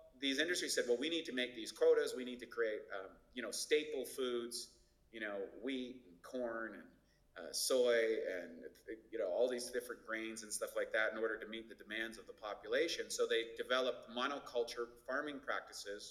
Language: Italian